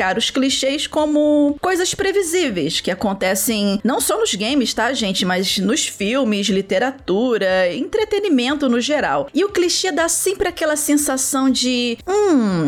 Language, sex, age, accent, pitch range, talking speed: Portuguese, female, 40-59, Brazilian, 205-285 Hz, 135 wpm